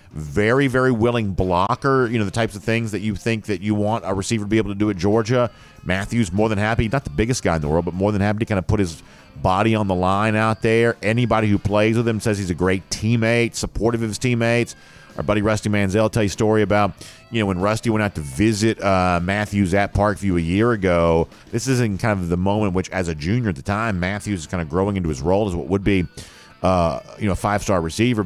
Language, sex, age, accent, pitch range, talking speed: English, male, 40-59, American, 95-115 Hz, 255 wpm